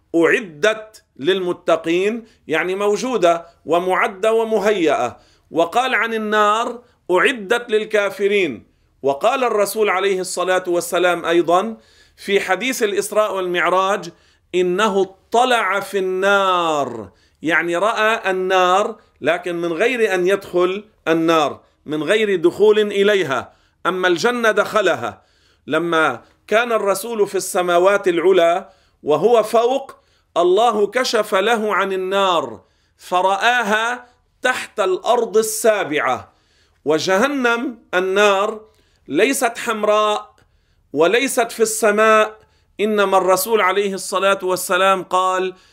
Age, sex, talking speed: 40-59, male, 95 wpm